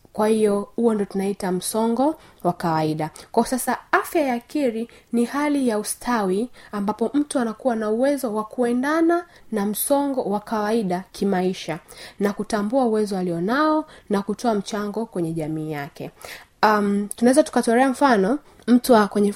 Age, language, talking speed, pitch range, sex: 20-39, Swahili, 145 wpm, 190-245 Hz, female